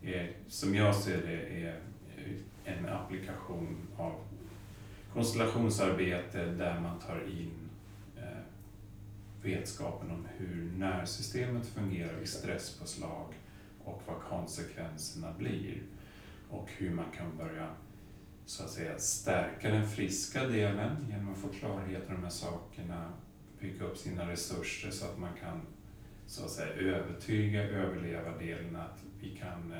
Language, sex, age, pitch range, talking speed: Swedish, male, 30-49, 85-105 Hz, 125 wpm